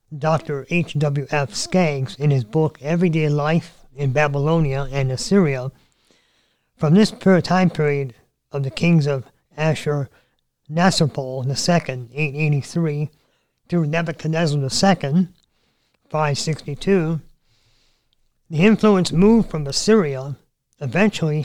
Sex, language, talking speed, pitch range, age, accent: male, English, 95 wpm, 135-170 Hz, 50-69, American